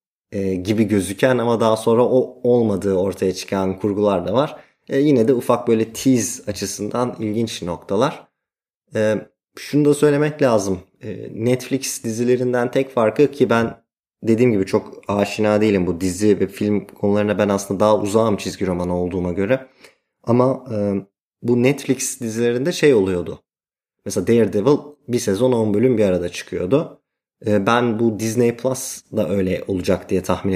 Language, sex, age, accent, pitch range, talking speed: Turkish, male, 30-49, native, 95-120 Hz, 150 wpm